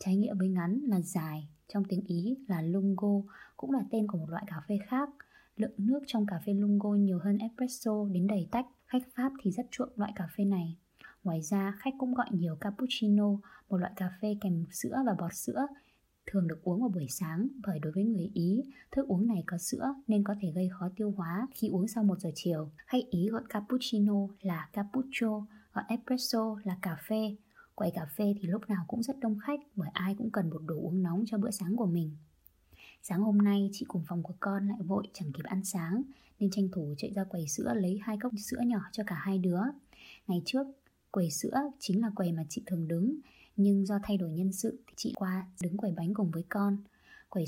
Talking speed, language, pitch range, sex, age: 225 wpm, Vietnamese, 180-225 Hz, female, 20-39